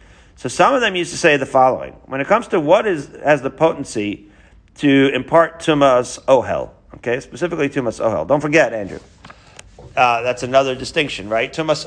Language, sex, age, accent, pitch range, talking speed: English, male, 40-59, American, 95-140 Hz, 175 wpm